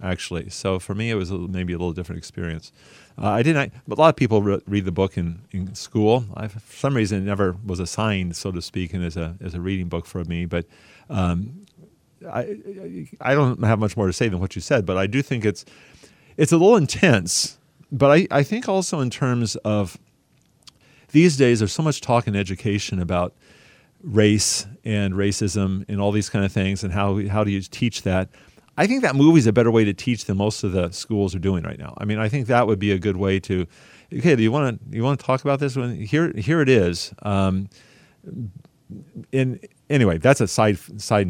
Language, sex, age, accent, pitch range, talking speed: English, male, 40-59, American, 95-130 Hz, 225 wpm